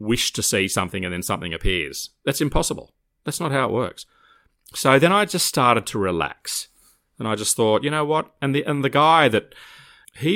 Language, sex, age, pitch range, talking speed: English, male, 30-49, 90-125 Hz, 210 wpm